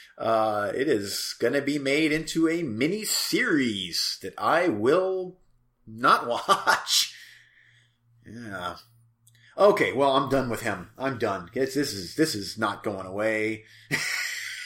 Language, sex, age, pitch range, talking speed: English, male, 30-49, 110-155 Hz, 125 wpm